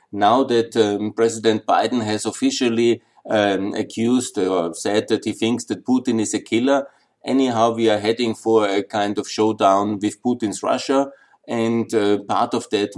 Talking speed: 165 wpm